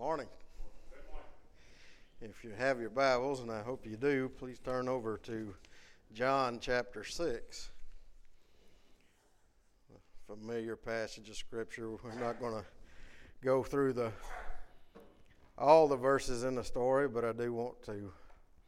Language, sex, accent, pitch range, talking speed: English, male, American, 110-140 Hz, 135 wpm